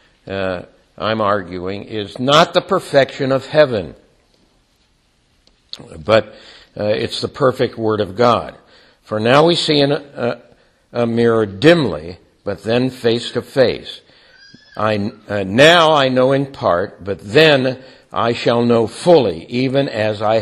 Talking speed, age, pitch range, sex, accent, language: 135 wpm, 60-79, 110-155 Hz, male, American, English